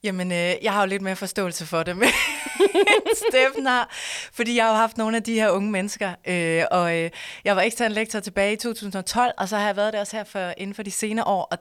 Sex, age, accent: female, 20-39, native